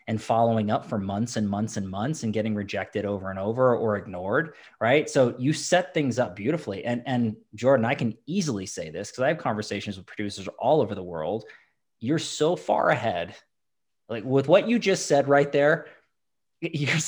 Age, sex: 20-39, male